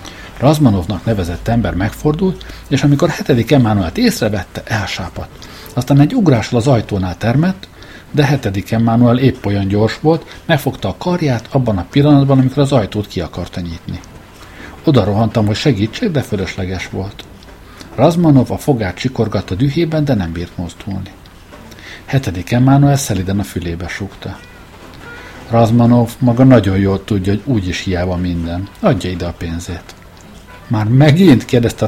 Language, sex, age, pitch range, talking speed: Hungarian, male, 50-69, 95-130 Hz, 135 wpm